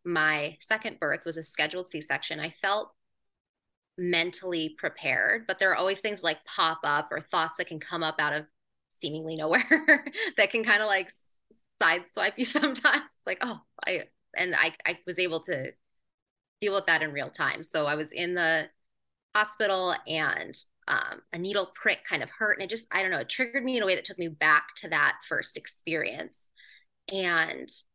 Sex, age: female, 20-39